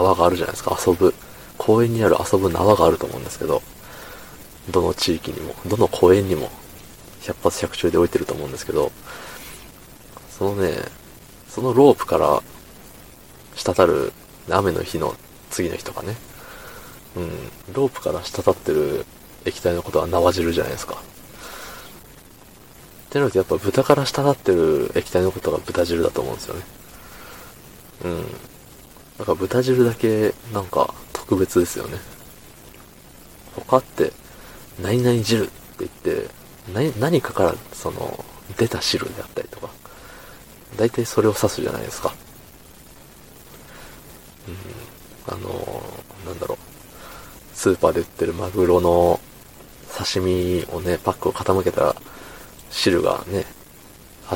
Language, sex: Japanese, male